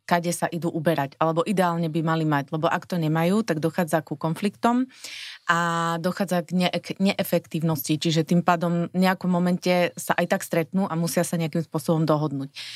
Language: Slovak